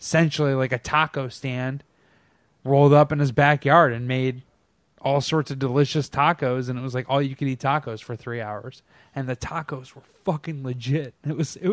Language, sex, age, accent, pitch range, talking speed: English, male, 20-39, American, 130-160 Hz, 195 wpm